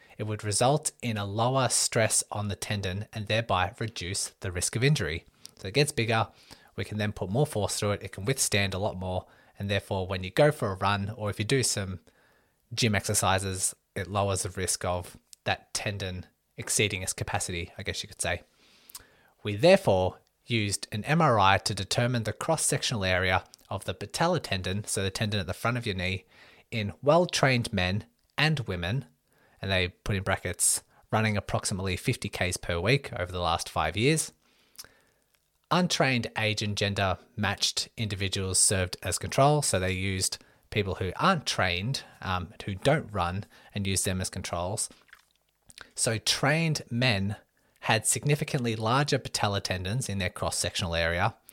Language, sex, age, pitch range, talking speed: English, male, 20-39, 95-120 Hz, 170 wpm